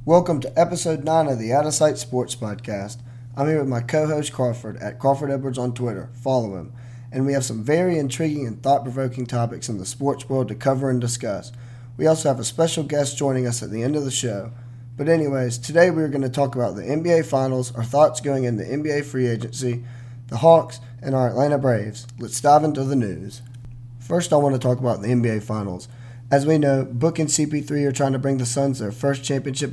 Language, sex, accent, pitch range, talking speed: English, male, American, 120-140 Hz, 220 wpm